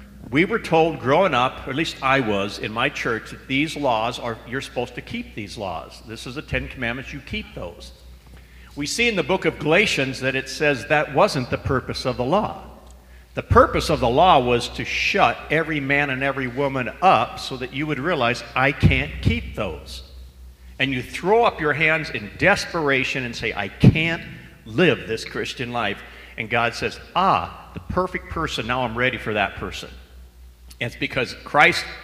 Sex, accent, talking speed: male, American, 190 wpm